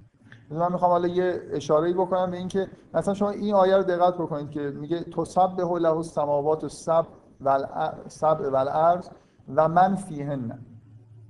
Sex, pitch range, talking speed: male, 120-170 Hz, 155 wpm